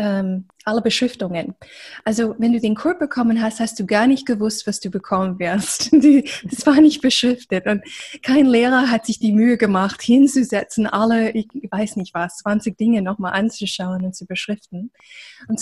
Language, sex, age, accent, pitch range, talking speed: German, female, 20-39, German, 205-250 Hz, 170 wpm